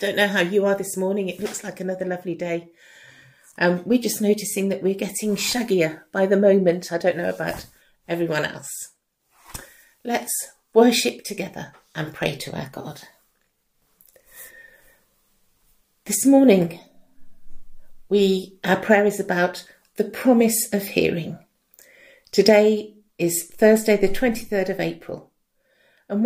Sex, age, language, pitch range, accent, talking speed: female, 50-69, English, 180-225 Hz, British, 135 wpm